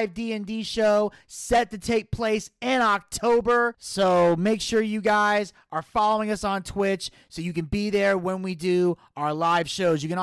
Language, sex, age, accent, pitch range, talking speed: English, male, 30-49, American, 175-215 Hz, 180 wpm